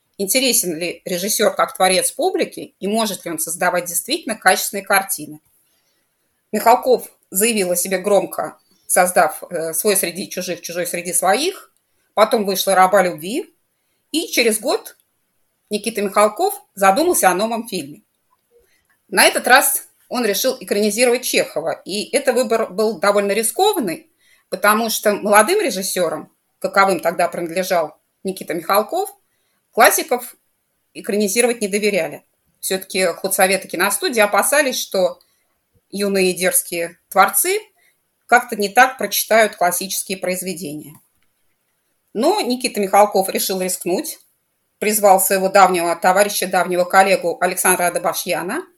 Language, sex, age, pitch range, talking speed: Russian, female, 30-49, 185-230 Hz, 115 wpm